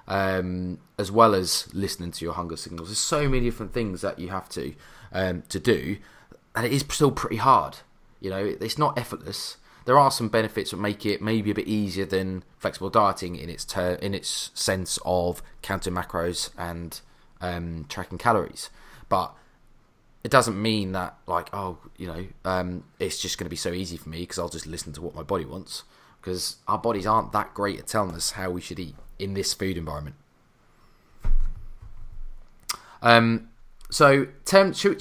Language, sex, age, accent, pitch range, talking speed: English, male, 20-39, British, 90-110 Hz, 195 wpm